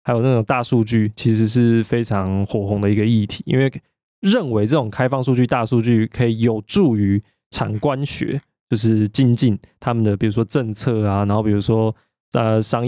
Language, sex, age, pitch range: Chinese, male, 20-39, 115-155 Hz